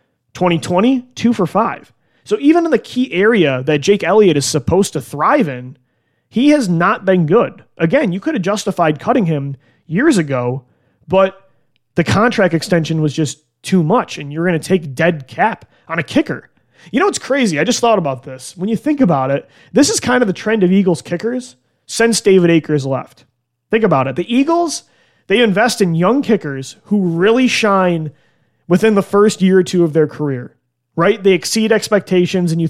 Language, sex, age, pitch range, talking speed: English, male, 30-49, 150-210 Hz, 195 wpm